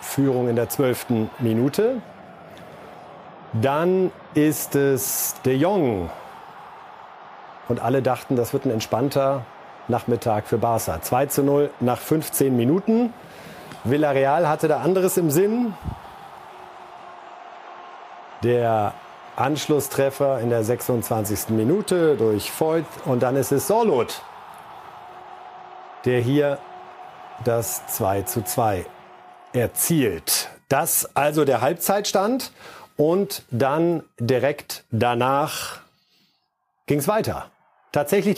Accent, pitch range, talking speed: German, 120-185 Hz, 100 wpm